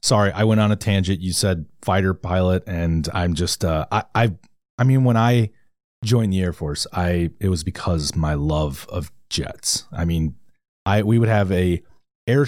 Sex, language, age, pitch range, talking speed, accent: male, English, 30-49, 85-110 Hz, 190 wpm, American